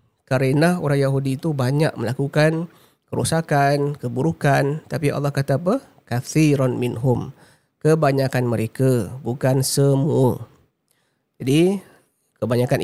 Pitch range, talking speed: 130-165 Hz, 95 wpm